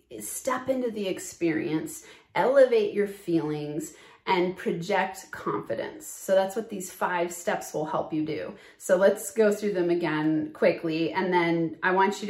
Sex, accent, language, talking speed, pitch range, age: female, American, English, 155 wpm, 170-205 Hz, 30-49